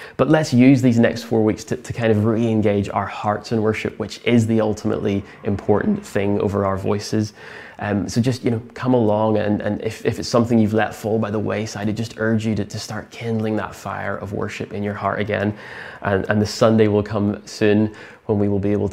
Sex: male